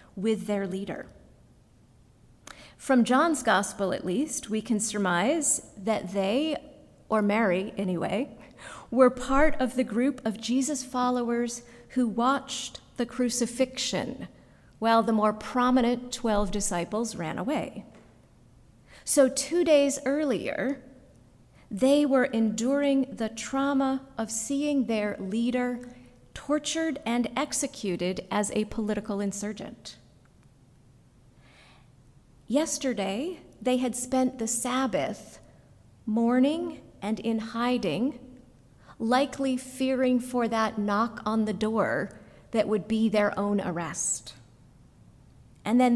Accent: American